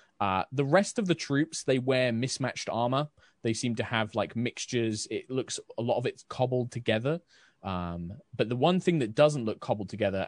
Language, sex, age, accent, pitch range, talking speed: English, male, 20-39, British, 100-125 Hz, 195 wpm